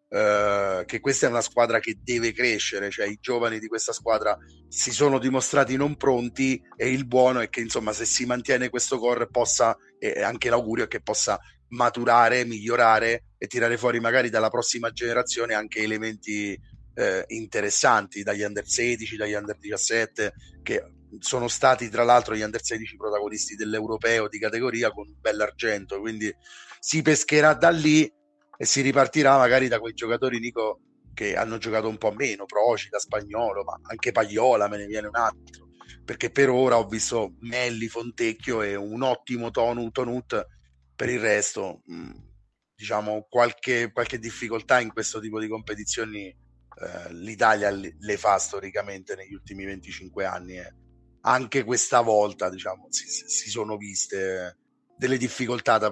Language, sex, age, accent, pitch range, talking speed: Italian, male, 30-49, native, 105-125 Hz, 160 wpm